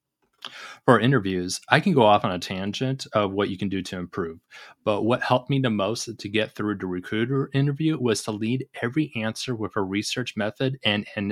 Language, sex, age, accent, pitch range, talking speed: English, male, 30-49, American, 100-130 Hz, 205 wpm